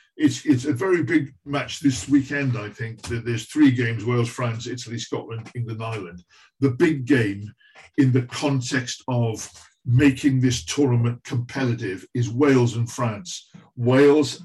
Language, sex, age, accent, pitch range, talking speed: English, male, 50-69, British, 115-135 Hz, 150 wpm